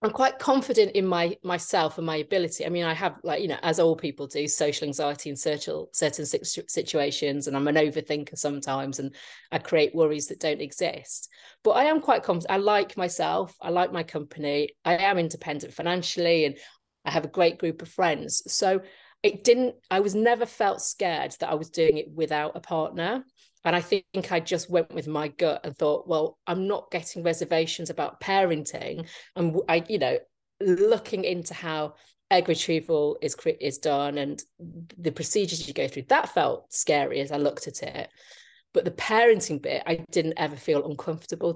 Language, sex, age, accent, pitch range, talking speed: English, female, 30-49, British, 155-195 Hz, 190 wpm